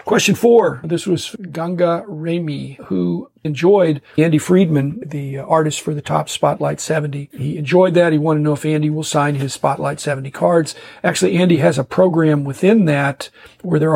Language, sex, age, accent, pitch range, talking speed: English, male, 50-69, American, 140-165 Hz, 175 wpm